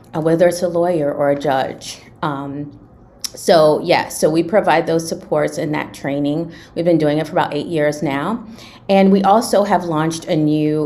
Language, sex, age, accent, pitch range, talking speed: English, female, 30-49, American, 140-170 Hz, 195 wpm